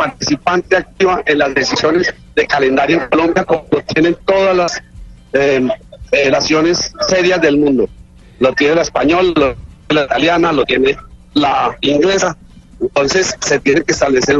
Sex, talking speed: male, 140 wpm